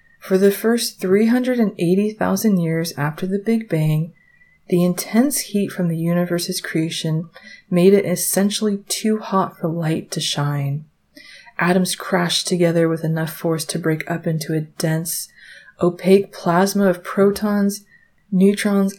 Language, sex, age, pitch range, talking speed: English, female, 20-39, 160-195 Hz, 135 wpm